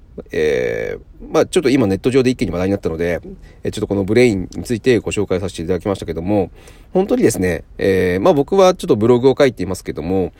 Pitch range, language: 90-140 Hz, Japanese